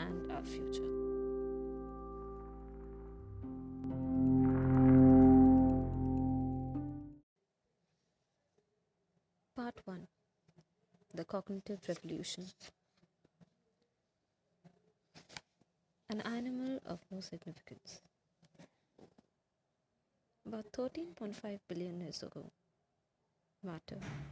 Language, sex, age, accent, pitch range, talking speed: English, female, 30-49, Indian, 145-210 Hz, 45 wpm